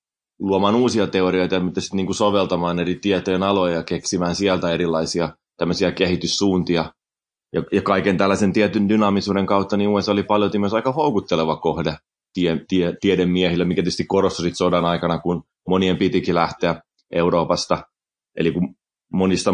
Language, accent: Finnish, native